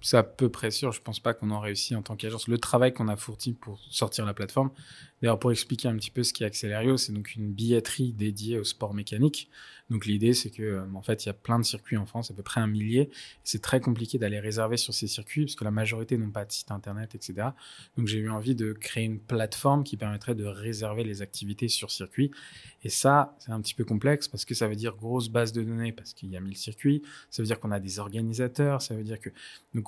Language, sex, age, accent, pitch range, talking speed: French, male, 20-39, French, 105-125 Hz, 260 wpm